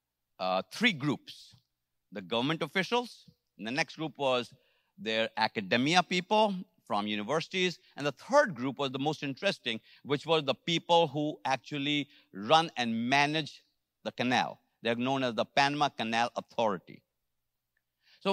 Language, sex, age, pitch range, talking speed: English, male, 50-69, 110-180 Hz, 140 wpm